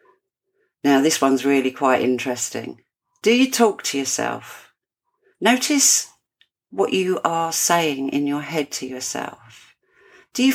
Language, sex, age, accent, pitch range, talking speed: English, female, 50-69, British, 130-185 Hz, 130 wpm